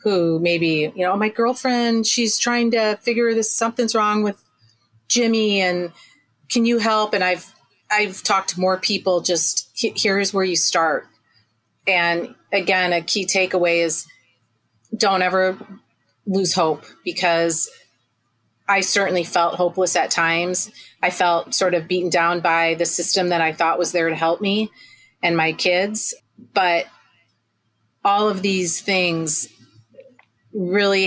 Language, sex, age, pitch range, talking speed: English, female, 30-49, 165-195 Hz, 145 wpm